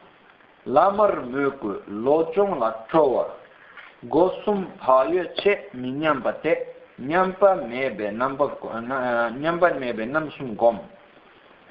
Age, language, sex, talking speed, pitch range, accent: 50-69, Italian, male, 75 wpm, 125-170 Hz, native